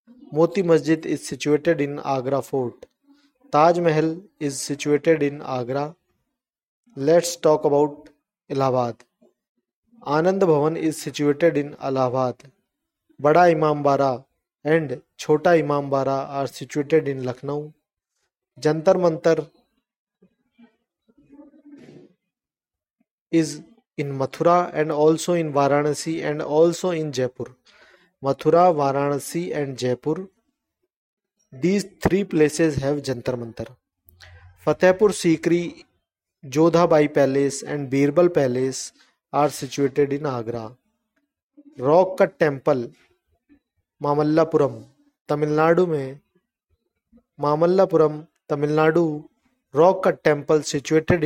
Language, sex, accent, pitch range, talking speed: Hindi, male, native, 140-175 Hz, 95 wpm